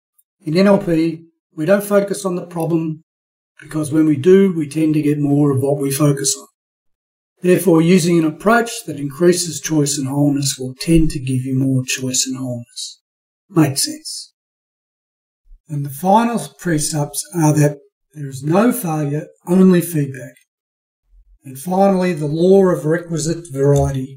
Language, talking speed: English, 150 wpm